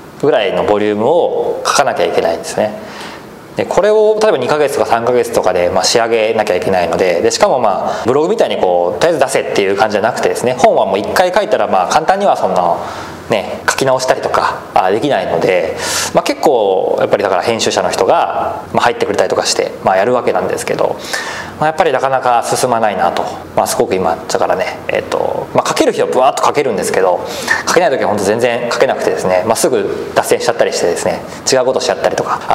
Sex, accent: male, native